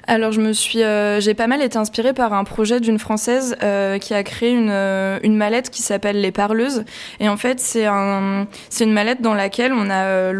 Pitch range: 200-225 Hz